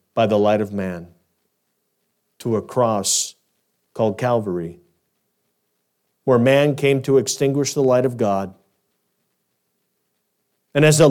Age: 50-69